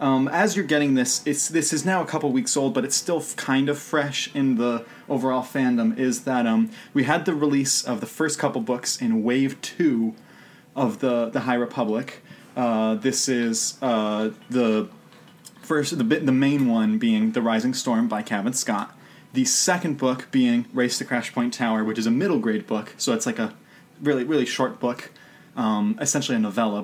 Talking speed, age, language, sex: 195 wpm, 20-39, English, male